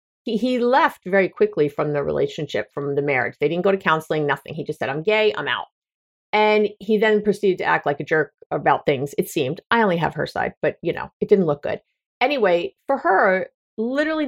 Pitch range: 180-245 Hz